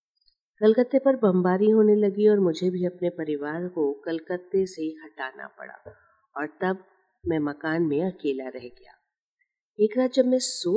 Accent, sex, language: native, female, Hindi